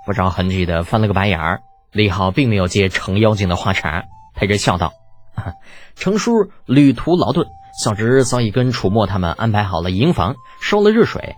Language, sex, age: Chinese, male, 20-39